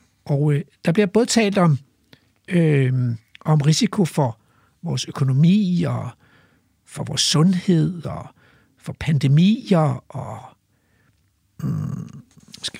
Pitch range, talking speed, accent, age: 135-195 Hz, 95 wpm, native, 60-79